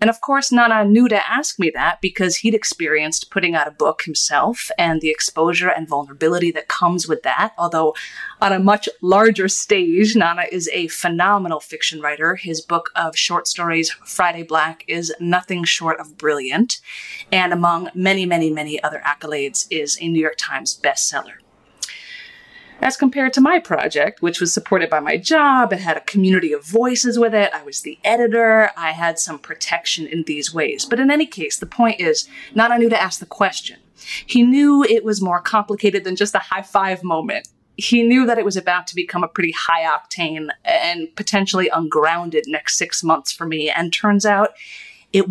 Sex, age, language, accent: female, 30-49, English, American